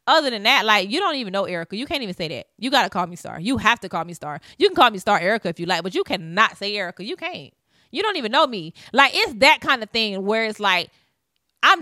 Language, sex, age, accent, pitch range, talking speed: English, female, 30-49, American, 215-285 Hz, 290 wpm